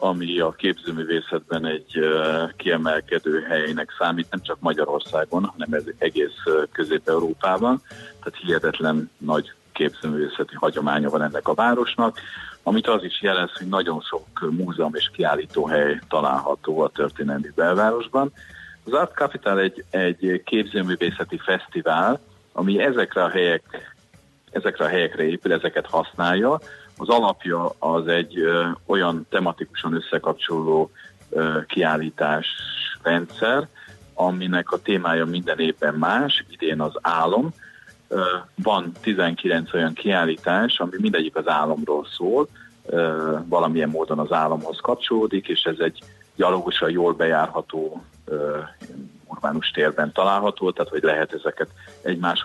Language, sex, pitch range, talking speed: Hungarian, male, 80-100 Hz, 110 wpm